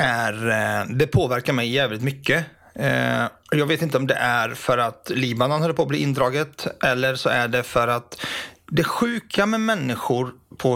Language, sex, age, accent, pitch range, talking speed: Swedish, male, 30-49, native, 120-155 Hz, 175 wpm